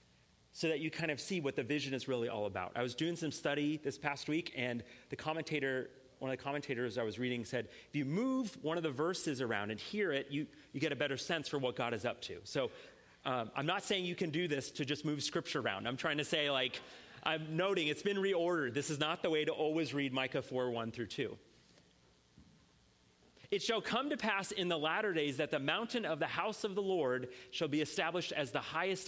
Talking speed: 240 wpm